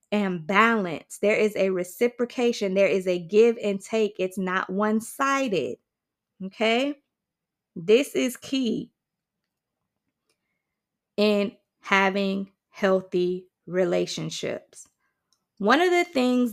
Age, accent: 20-39, American